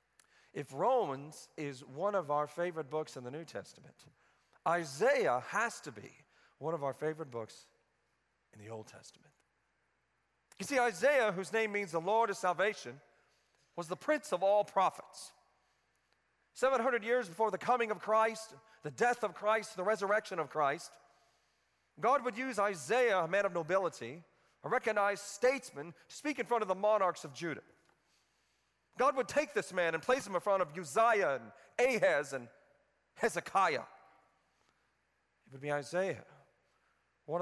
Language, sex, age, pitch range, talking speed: English, male, 40-59, 155-220 Hz, 155 wpm